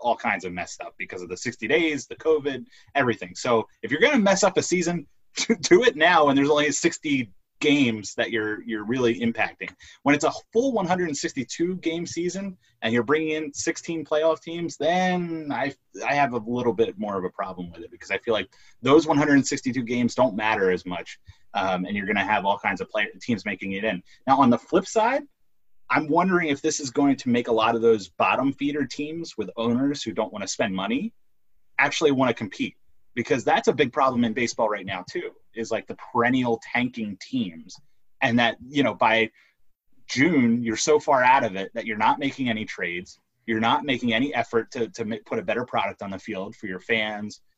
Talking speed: 215 wpm